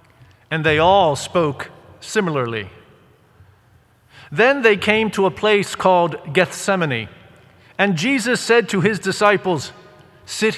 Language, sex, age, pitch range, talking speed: English, male, 50-69, 135-200 Hz, 115 wpm